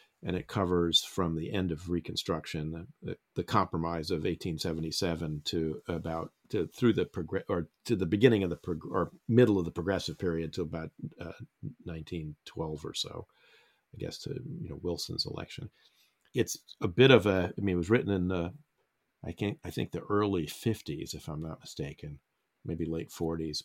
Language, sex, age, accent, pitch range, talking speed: English, male, 50-69, American, 80-95 Hz, 180 wpm